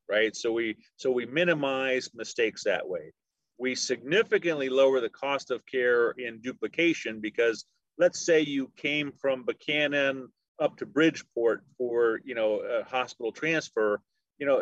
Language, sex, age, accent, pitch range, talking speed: English, male, 40-59, American, 120-165 Hz, 150 wpm